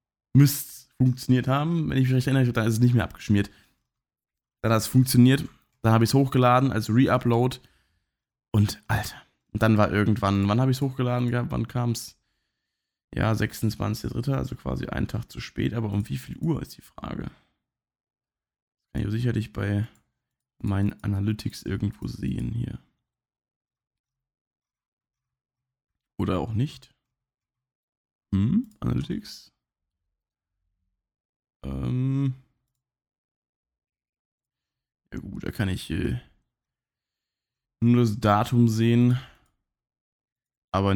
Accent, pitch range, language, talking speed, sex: German, 100-125 Hz, German, 115 wpm, male